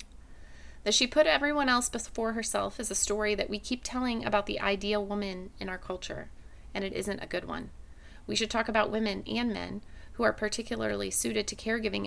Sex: female